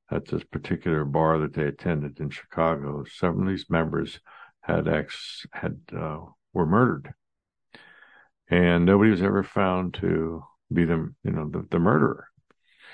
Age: 60-79